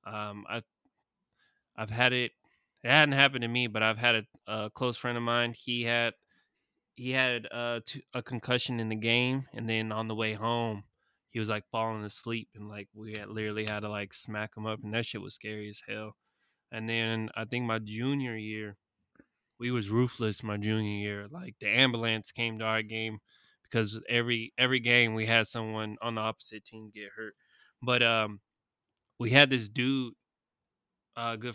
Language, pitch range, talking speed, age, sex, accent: English, 110-120 Hz, 190 wpm, 20-39, male, American